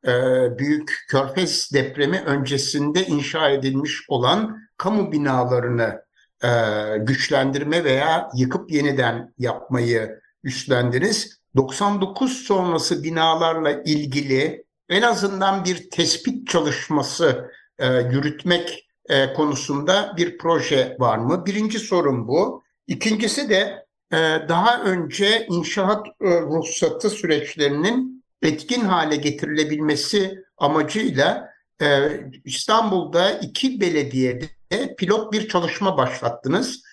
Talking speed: 85 wpm